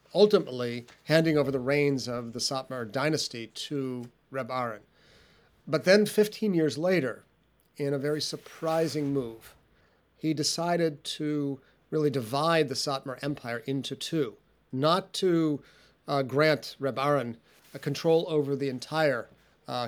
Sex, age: male, 40-59